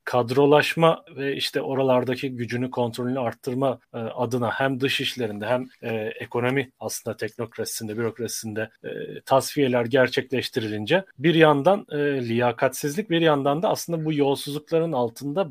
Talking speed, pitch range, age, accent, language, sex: 110 wpm, 115-140 Hz, 30-49, native, Turkish, male